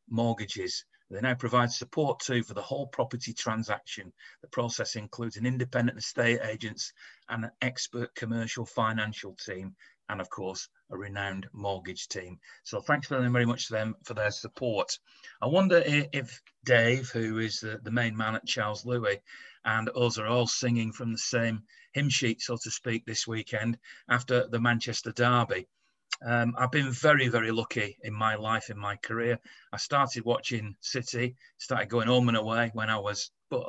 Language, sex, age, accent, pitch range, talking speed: English, male, 40-59, British, 110-125 Hz, 170 wpm